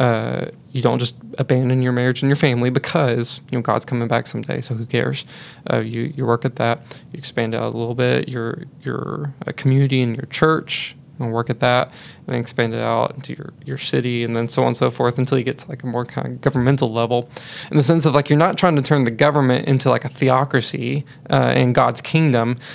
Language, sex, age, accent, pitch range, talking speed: English, male, 20-39, American, 120-145 Hz, 235 wpm